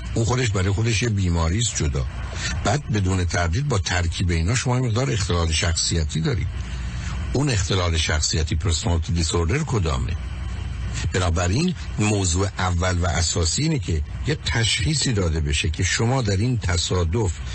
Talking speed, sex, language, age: 135 wpm, male, Persian, 60-79